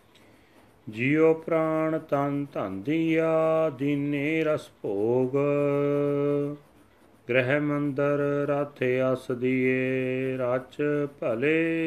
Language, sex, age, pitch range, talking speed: Punjabi, male, 40-59, 130-145 Hz, 80 wpm